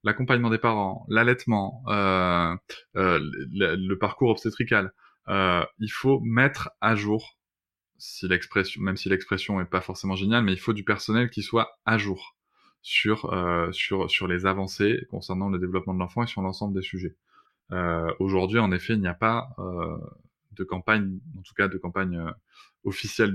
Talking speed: 175 wpm